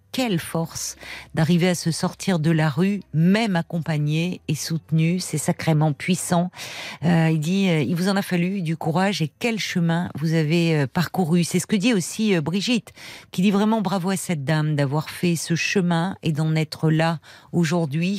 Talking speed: 190 wpm